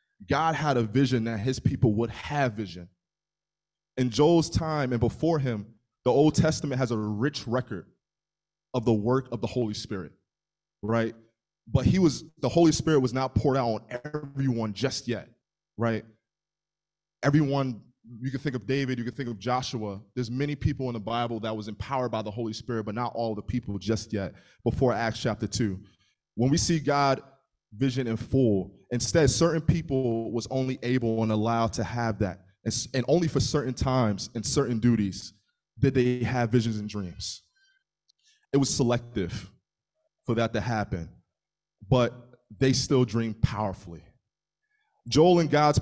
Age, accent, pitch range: 20-39, American, 110-140 Hz